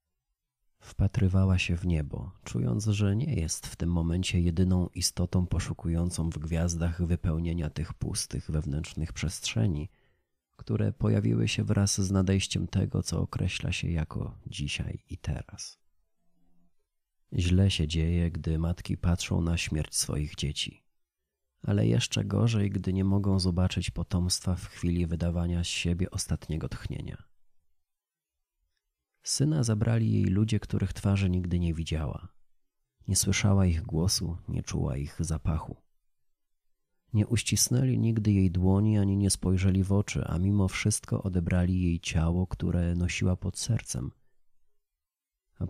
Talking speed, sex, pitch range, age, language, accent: 130 wpm, male, 85-105 Hz, 40-59, Polish, native